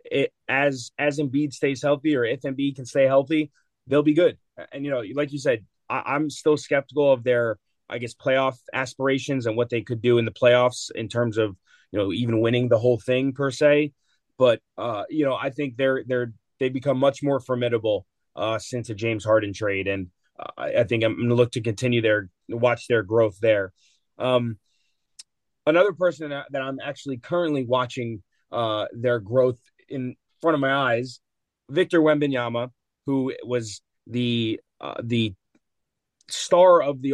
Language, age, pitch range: English, 20-39, 120-145 Hz